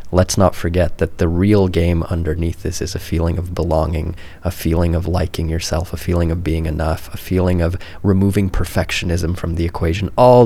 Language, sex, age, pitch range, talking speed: English, male, 20-39, 85-95 Hz, 190 wpm